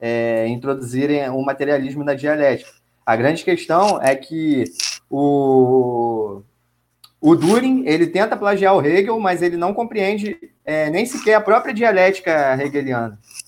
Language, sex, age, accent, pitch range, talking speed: Portuguese, male, 20-39, Brazilian, 120-170 Hz, 135 wpm